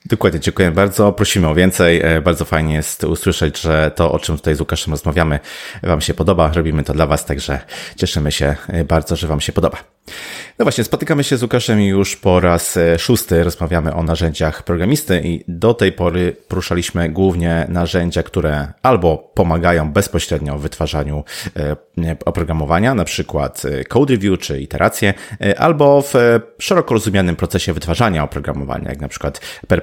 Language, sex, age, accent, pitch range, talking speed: Polish, male, 30-49, native, 80-100 Hz, 155 wpm